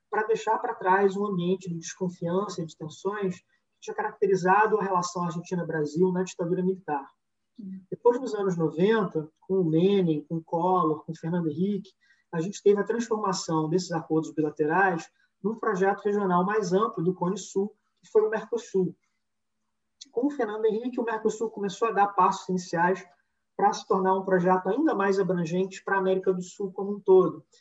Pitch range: 165-215 Hz